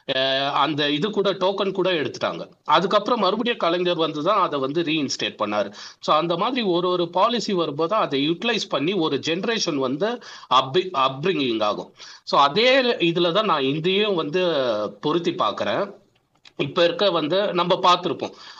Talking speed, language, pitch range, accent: 140 wpm, Tamil, 140-190 Hz, native